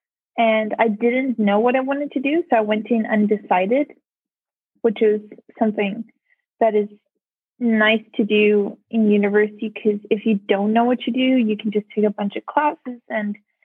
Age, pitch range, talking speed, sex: 20-39, 210-245 Hz, 180 wpm, female